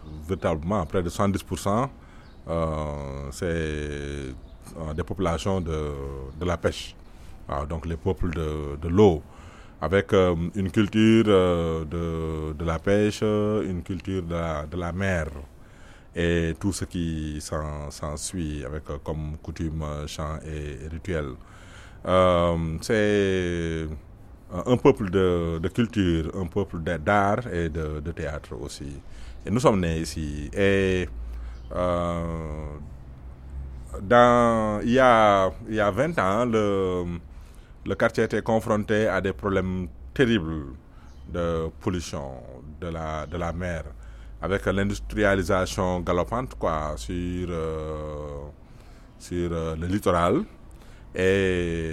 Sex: male